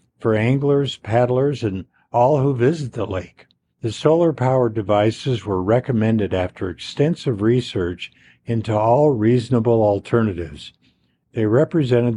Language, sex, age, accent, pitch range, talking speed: English, male, 50-69, American, 100-130 Hz, 115 wpm